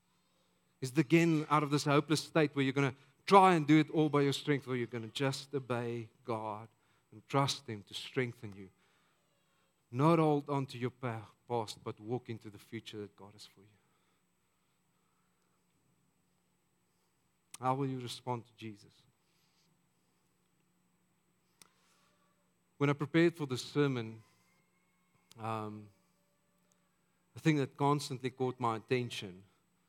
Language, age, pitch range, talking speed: English, 50-69, 115-145 Hz, 140 wpm